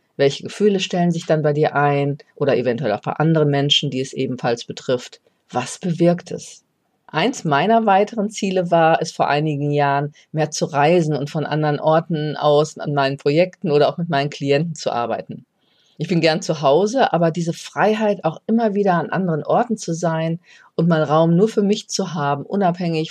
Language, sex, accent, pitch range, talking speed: German, female, German, 145-175 Hz, 190 wpm